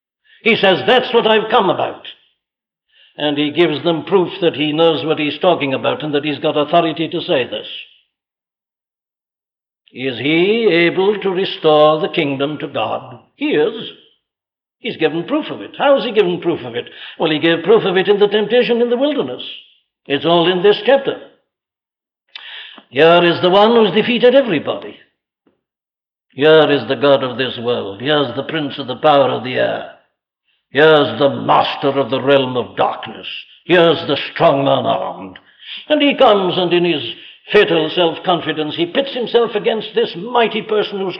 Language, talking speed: English, 175 wpm